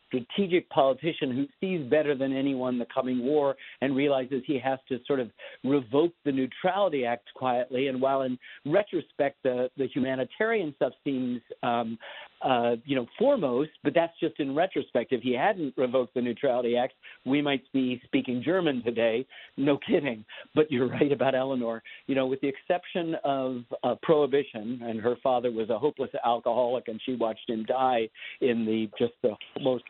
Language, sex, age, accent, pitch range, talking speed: English, male, 50-69, American, 125-155 Hz, 175 wpm